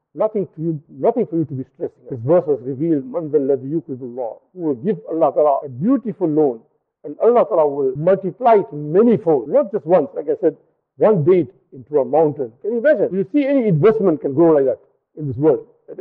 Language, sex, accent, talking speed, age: English, male, Indian, 215 wpm, 50-69